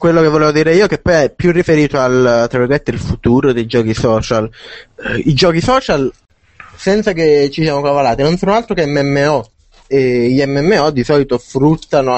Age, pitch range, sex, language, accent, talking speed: 20-39, 120-145 Hz, male, Italian, native, 175 wpm